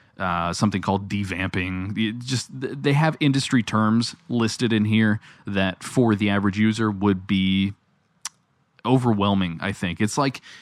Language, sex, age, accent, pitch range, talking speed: English, male, 20-39, American, 95-110 Hz, 135 wpm